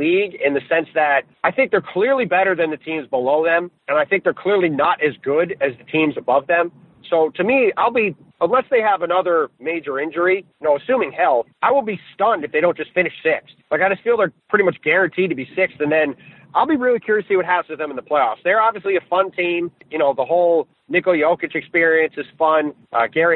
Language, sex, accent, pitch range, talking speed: English, male, American, 150-190 Hz, 240 wpm